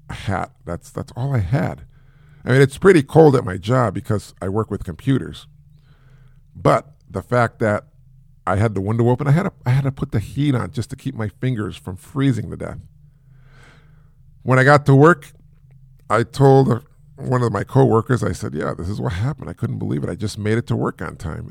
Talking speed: 215 wpm